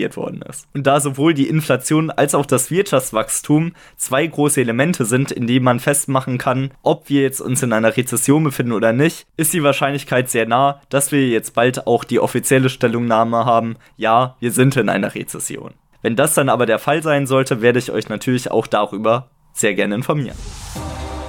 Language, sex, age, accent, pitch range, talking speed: German, male, 20-39, German, 115-145 Hz, 190 wpm